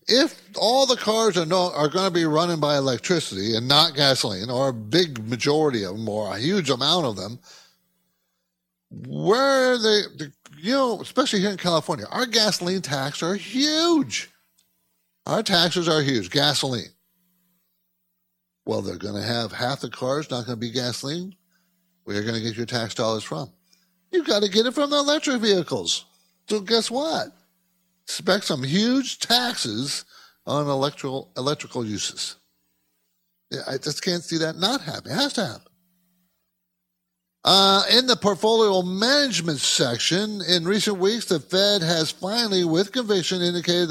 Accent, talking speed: American, 160 wpm